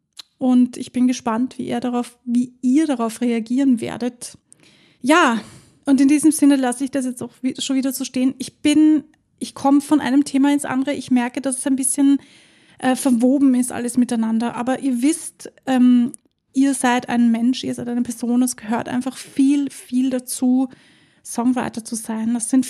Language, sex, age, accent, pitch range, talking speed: German, female, 20-39, German, 235-265 Hz, 185 wpm